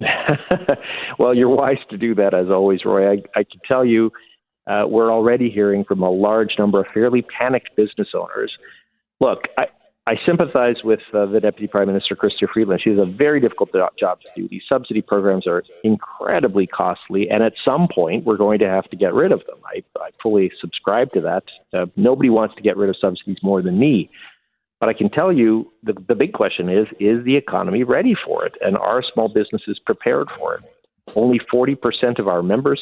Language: English